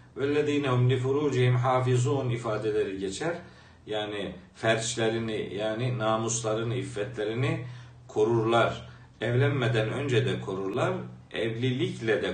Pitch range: 110-145 Hz